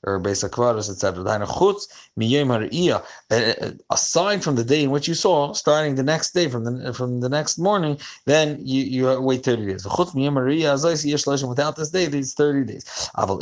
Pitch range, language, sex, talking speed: 110-145 Hz, English, male, 215 wpm